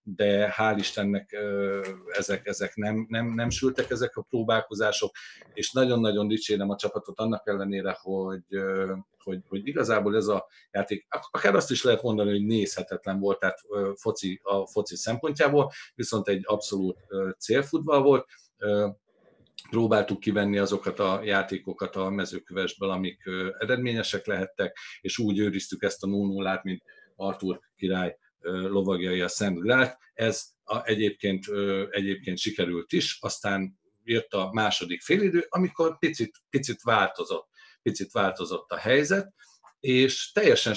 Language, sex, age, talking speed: Hungarian, male, 50-69, 130 wpm